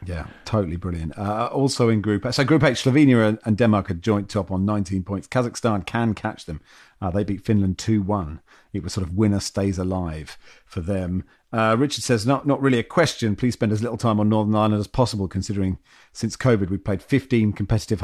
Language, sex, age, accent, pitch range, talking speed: English, male, 40-59, British, 105-125 Hz, 205 wpm